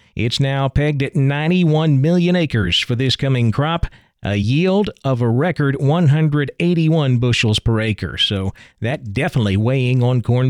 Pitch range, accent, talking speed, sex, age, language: 120-150 Hz, American, 150 wpm, male, 40-59, English